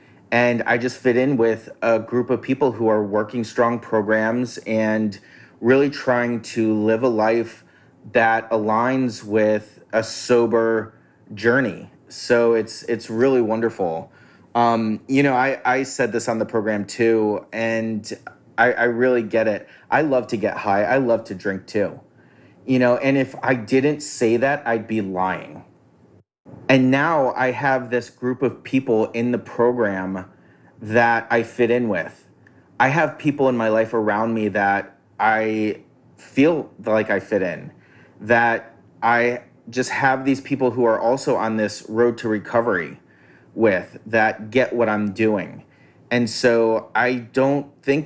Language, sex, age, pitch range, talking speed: English, male, 30-49, 110-125 Hz, 160 wpm